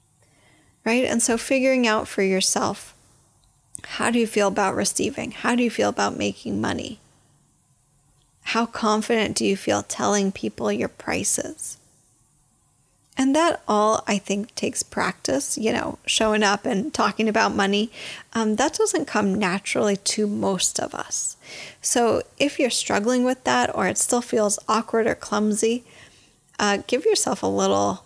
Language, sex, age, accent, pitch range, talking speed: English, female, 10-29, American, 195-235 Hz, 150 wpm